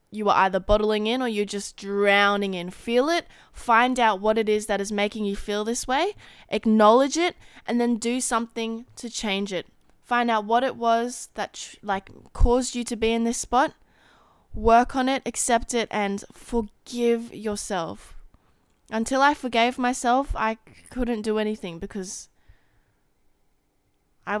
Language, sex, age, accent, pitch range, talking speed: English, female, 20-39, Australian, 200-240 Hz, 160 wpm